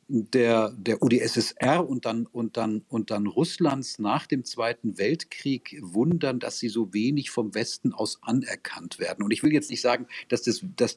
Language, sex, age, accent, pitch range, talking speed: German, male, 50-69, German, 110-125 Hz, 180 wpm